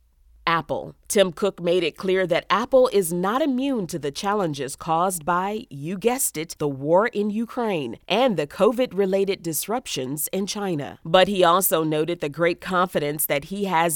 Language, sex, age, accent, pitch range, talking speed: English, female, 40-59, American, 155-205 Hz, 170 wpm